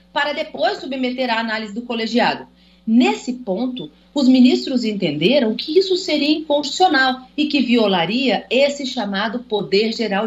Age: 40-59